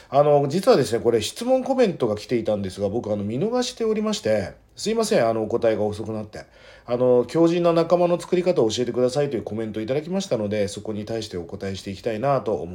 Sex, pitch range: male, 105-175 Hz